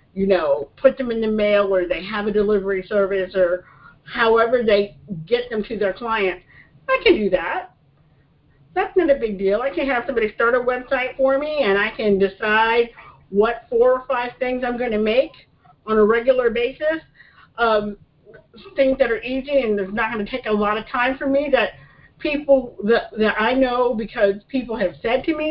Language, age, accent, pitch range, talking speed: English, 50-69, American, 195-270 Hz, 200 wpm